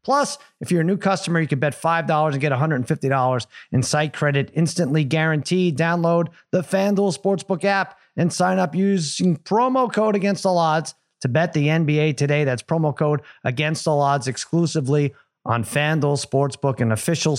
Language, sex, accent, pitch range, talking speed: English, male, American, 140-185 Hz, 170 wpm